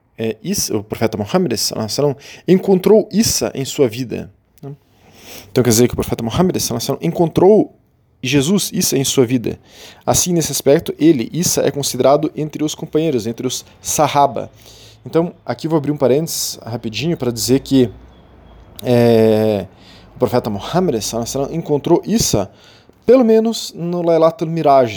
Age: 20-39